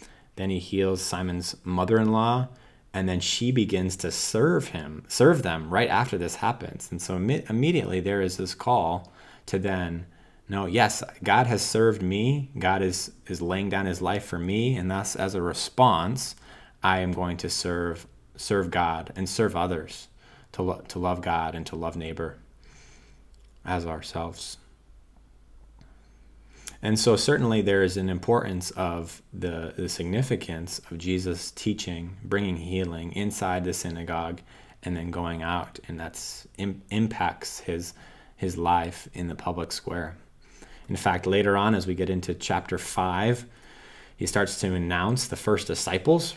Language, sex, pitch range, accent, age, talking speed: English, male, 85-105 Hz, American, 30-49, 155 wpm